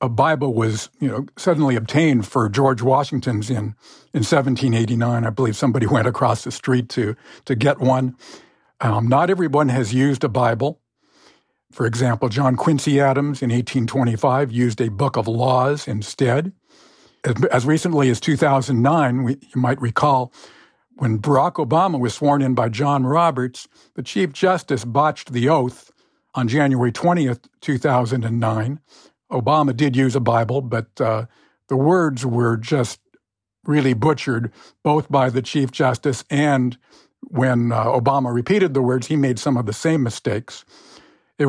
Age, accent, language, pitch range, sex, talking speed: 50-69, American, English, 125-150 Hz, male, 150 wpm